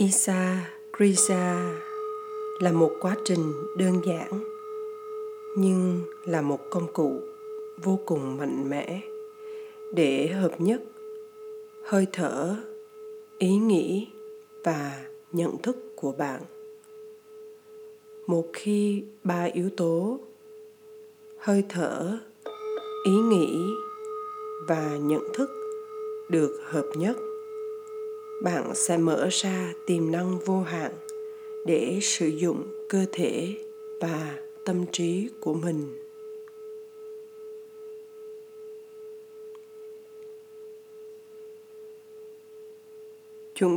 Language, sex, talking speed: Vietnamese, female, 85 wpm